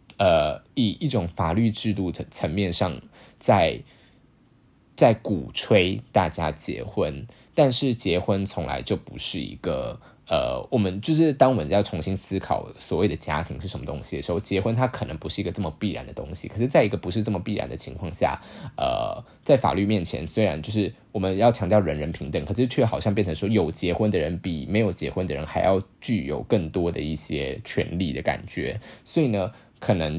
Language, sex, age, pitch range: Chinese, male, 20-39, 85-110 Hz